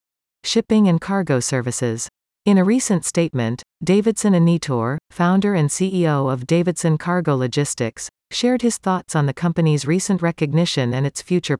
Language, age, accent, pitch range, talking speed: English, 40-59, American, 135-185 Hz, 145 wpm